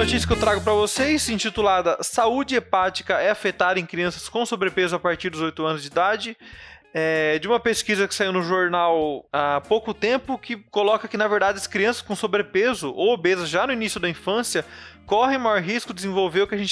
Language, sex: Portuguese, male